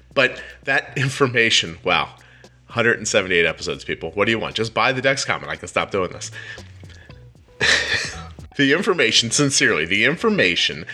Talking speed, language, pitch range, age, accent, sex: 145 wpm, English, 95-140 Hz, 30-49, American, male